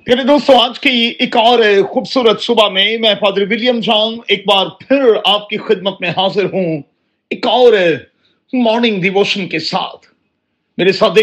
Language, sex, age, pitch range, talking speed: Urdu, male, 40-59, 190-240 Hz, 160 wpm